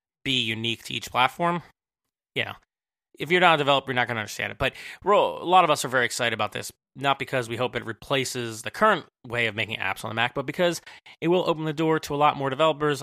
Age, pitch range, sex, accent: 30-49, 120-150 Hz, male, American